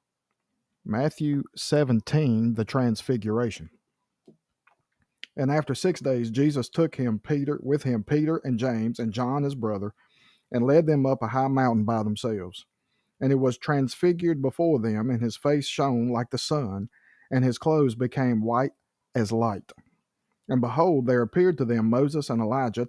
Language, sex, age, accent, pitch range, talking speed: English, male, 50-69, American, 115-145 Hz, 155 wpm